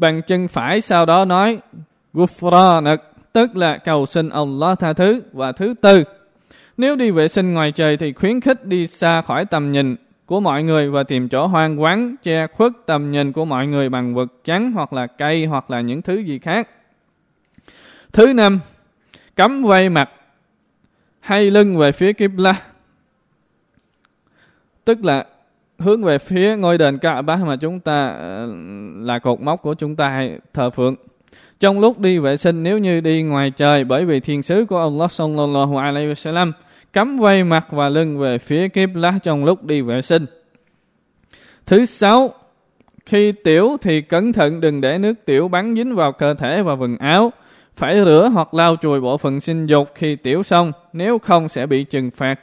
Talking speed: 180 wpm